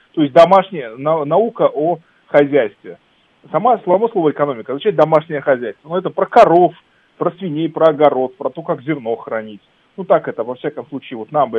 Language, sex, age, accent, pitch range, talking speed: Russian, male, 30-49, native, 140-195 Hz, 185 wpm